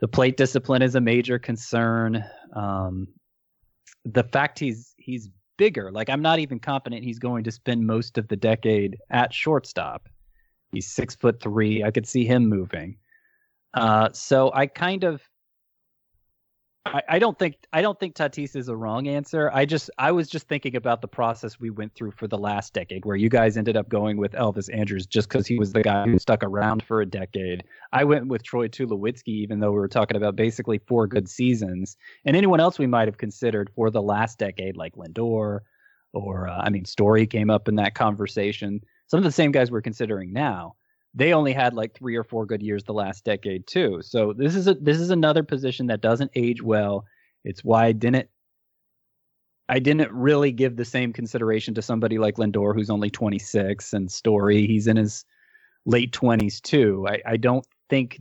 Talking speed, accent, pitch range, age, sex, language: 195 wpm, American, 105-135 Hz, 30-49, male, English